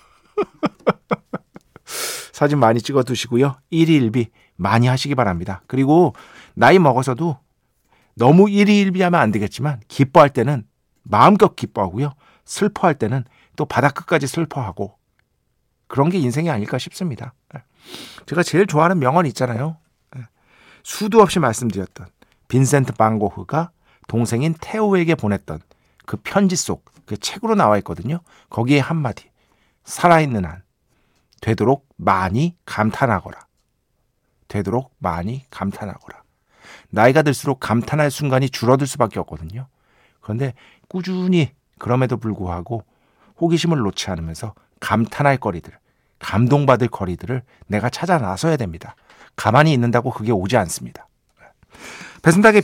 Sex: male